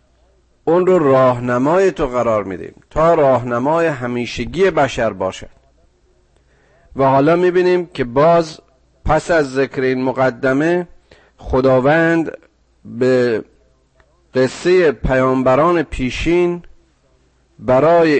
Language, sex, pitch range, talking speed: Persian, male, 125-170 Hz, 90 wpm